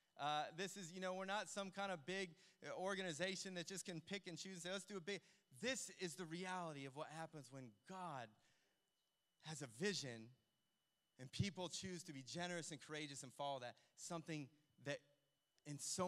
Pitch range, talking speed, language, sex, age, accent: 155-210 Hz, 190 wpm, English, male, 30-49, American